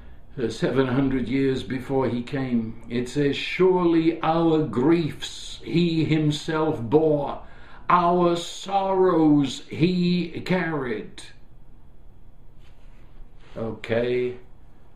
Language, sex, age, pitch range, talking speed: English, male, 60-79, 135-185 Hz, 70 wpm